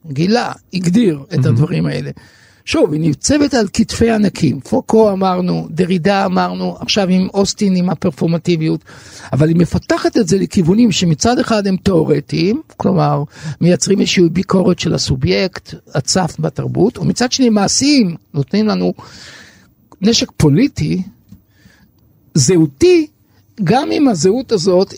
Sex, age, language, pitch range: male, 60-79, Hebrew, 150-210 Hz